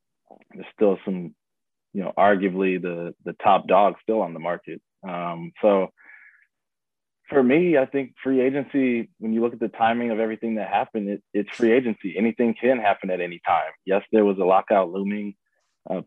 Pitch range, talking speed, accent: 95-105 Hz, 180 wpm, American